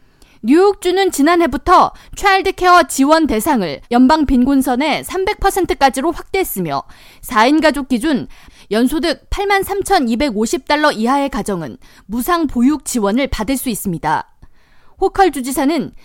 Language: Korean